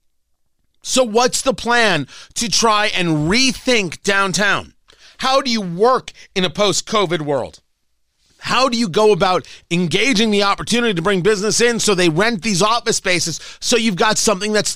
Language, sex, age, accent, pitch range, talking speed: English, male, 40-59, American, 155-215 Hz, 165 wpm